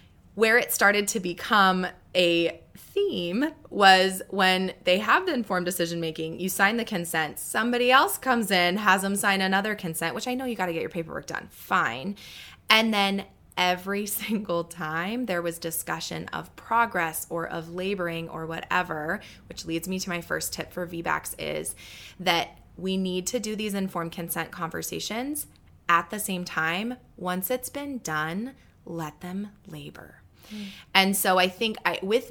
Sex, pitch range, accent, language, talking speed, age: female, 165-205 Hz, American, English, 165 wpm, 20-39